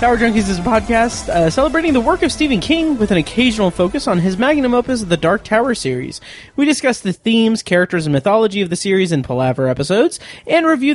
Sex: male